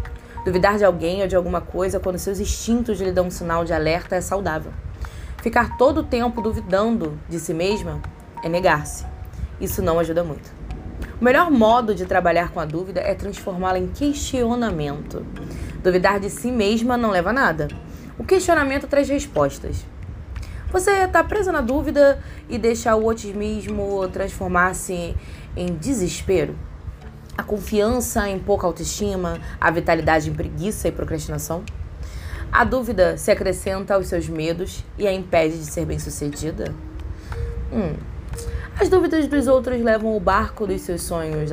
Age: 20-39